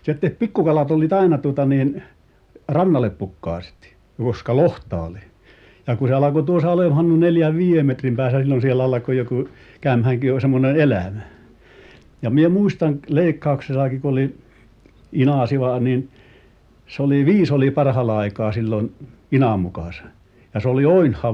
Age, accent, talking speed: 60-79, native, 135 wpm